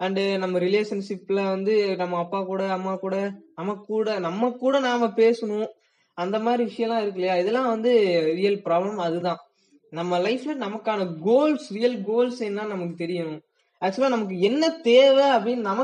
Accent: native